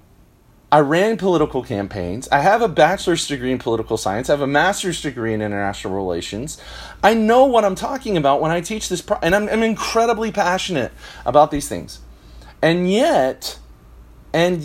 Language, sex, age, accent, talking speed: English, male, 40-59, American, 170 wpm